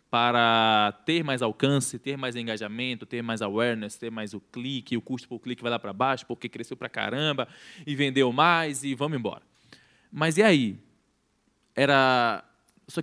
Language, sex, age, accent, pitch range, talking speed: Portuguese, male, 20-39, Brazilian, 120-150 Hz, 170 wpm